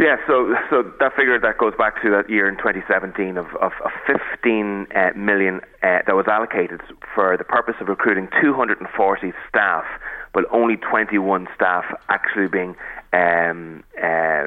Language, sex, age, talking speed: English, male, 30-49, 150 wpm